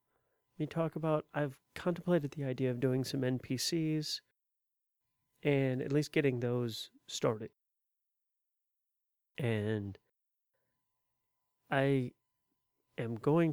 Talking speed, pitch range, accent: 90 wpm, 110-140 Hz, American